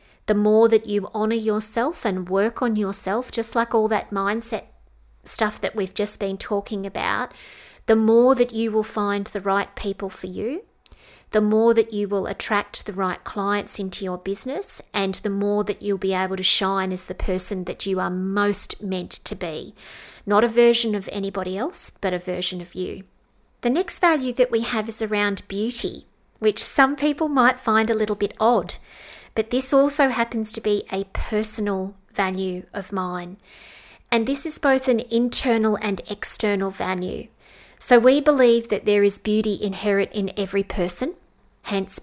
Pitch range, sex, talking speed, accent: 195-230 Hz, female, 180 wpm, Australian